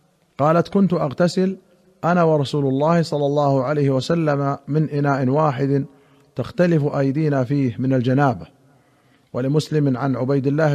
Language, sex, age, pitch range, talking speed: Arabic, male, 50-69, 130-155 Hz, 125 wpm